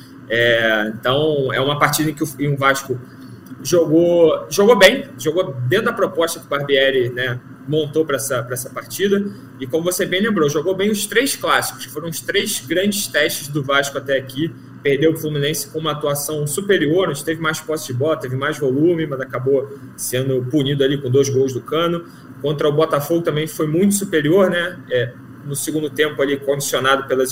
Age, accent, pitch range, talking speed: 20-39, Brazilian, 135-170 Hz, 190 wpm